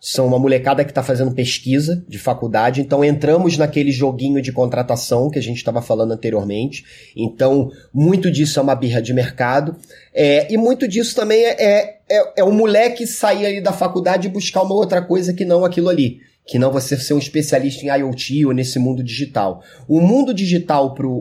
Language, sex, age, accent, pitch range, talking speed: Portuguese, male, 30-49, Brazilian, 125-170 Hz, 195 wpm